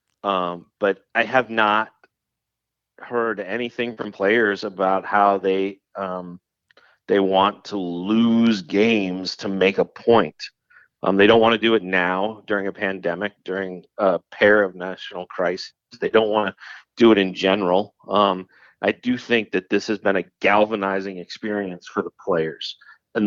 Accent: American